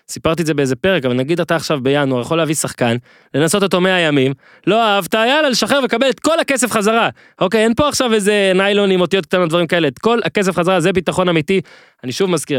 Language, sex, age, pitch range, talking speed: Hebrew, male, 20-39, 130-190 Hz, 220 wpm